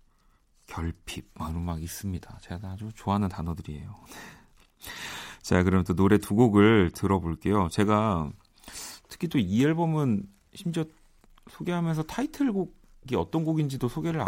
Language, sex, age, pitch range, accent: Korean, male, 40-59, 90-135 Hz, native